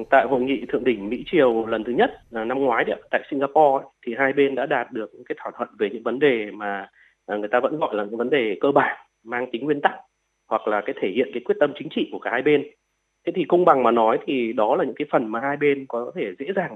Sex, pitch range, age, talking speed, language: male, 125-180 Hz, 20-39, 280 wpm, Vietnamese